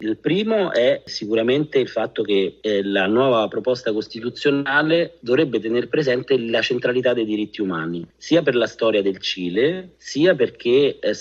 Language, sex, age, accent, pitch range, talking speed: Italian, male, 40-59, native, 100-125 Hz, 155 wpm